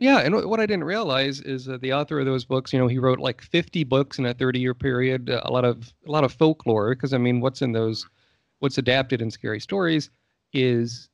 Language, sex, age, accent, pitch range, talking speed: English, male, 40-59, American, 115-140 Hz, 235 wpm